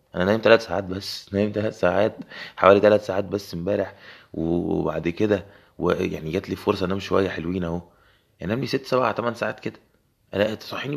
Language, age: Arabic, 20-39